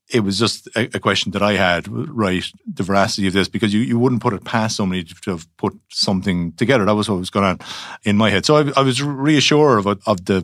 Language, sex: English, male